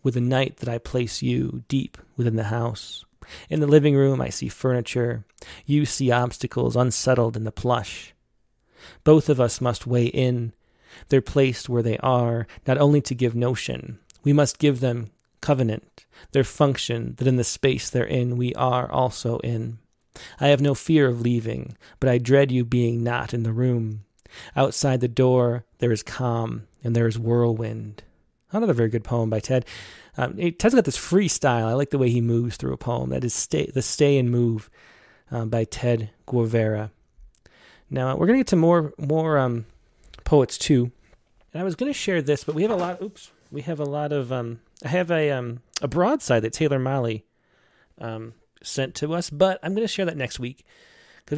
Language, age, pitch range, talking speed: English, 30-49, 115-145 Hz, 195 wpm